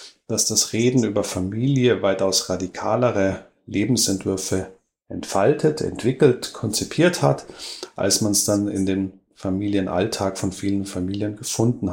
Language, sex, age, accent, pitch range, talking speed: German, male, 30-49, German, 95-120 Hz, 115 wpm